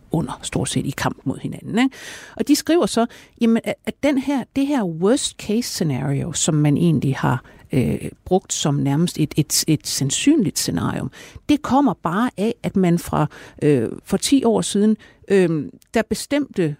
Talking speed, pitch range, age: 175 wpm, 155-215 Hz, 60-79